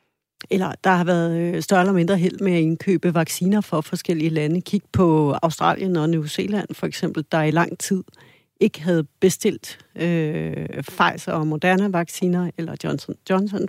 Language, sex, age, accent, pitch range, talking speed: Danish, female, 60-79, native, 160-185 Hz, 165 wpm